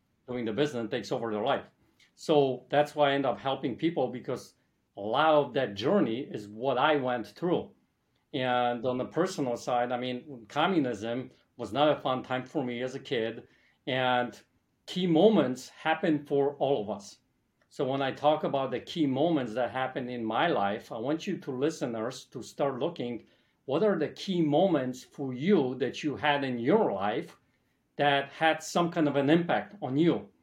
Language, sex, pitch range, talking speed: English, male, 125-150 Hz, 190 wpm